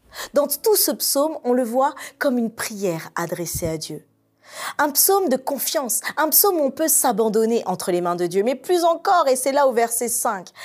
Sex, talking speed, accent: female, 210 wpm, French